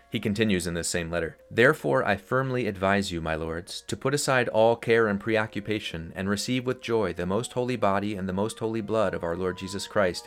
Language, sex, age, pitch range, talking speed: English, male, 30-49, 85-105 Hz, 220 wpm